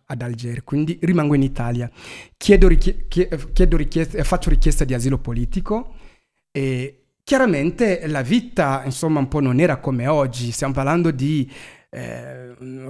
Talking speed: 145 wpm